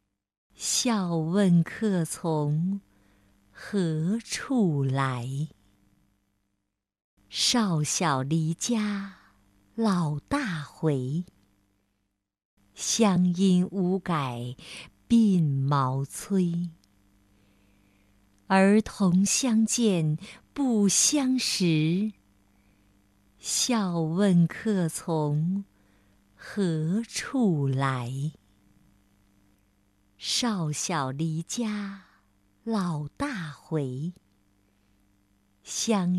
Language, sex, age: Chinese, female, 50-69